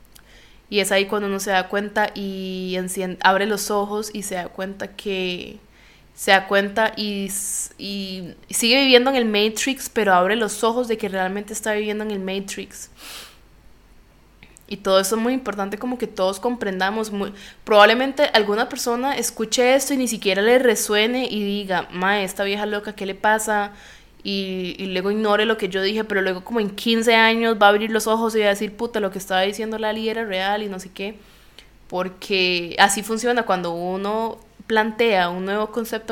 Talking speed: 185 wpm